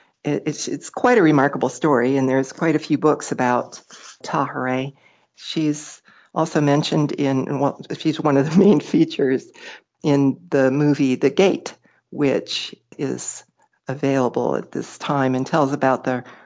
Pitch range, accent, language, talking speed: 140-170 Hz, American, English, 140 wpm